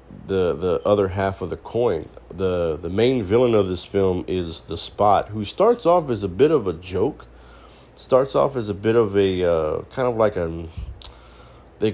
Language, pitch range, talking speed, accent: English, 90-120 Hz, 195 wpm, American